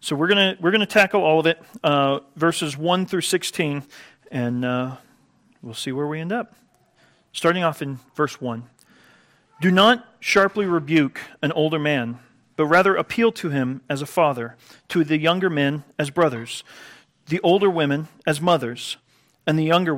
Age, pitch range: 40-59, 130-185 Hz